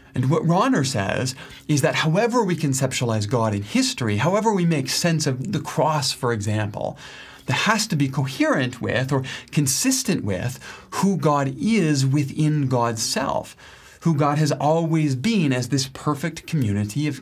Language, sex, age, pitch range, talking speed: English, male, 30-49, 125-160 Hz, 160 wpm